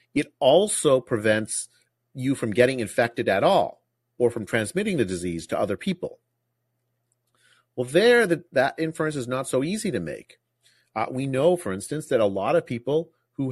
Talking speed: 175 wpm